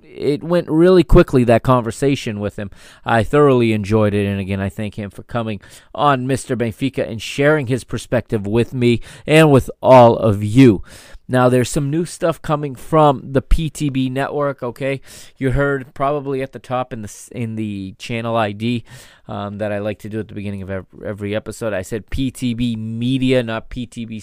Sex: male